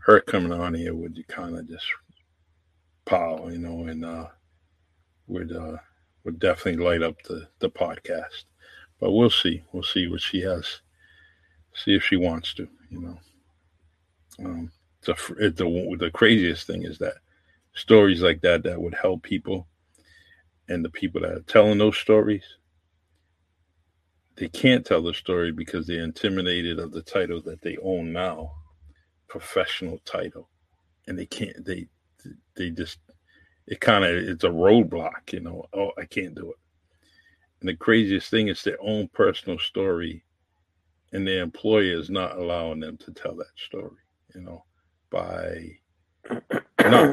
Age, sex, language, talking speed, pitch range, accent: 50-69, male, English, 155 wpm, 80-90 Hz, American